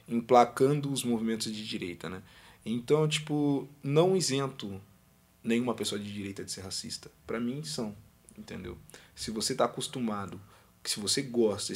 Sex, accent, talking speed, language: male, Brazilian, 145 wpm, Portuguese